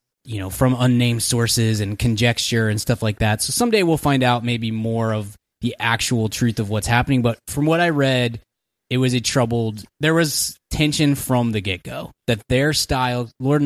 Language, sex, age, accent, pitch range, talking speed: English, male, 20-39, American, 110-135 Hz, 200 wpm